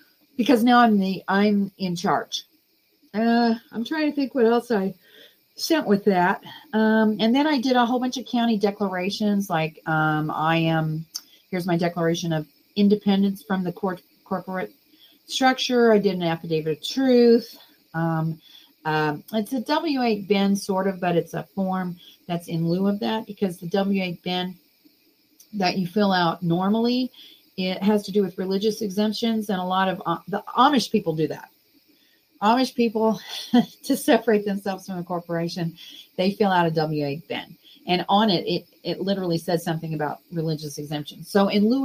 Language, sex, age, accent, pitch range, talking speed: English, female, 40-59, American, 170-235 Hz, 175 wpm